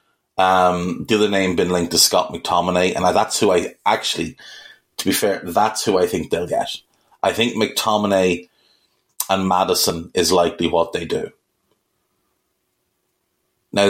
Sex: male